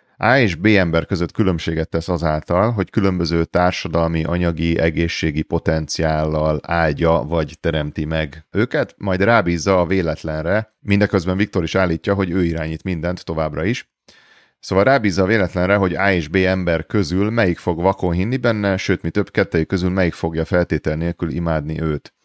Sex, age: male, 30-49